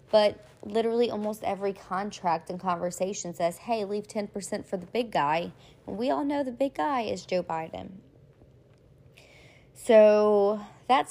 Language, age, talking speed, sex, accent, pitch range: English, 20-39, 145 wpm, female, American, 175-235 Hz